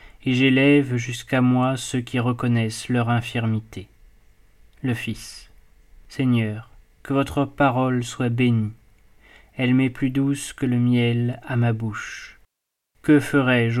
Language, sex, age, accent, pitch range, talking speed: French, male, 20-39, French, 115-130 Hz, 125 wpm